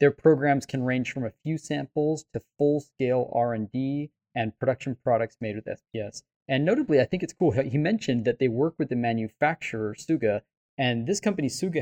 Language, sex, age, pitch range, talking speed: English, male, 20-39, 115-140 Hz, 185 wpm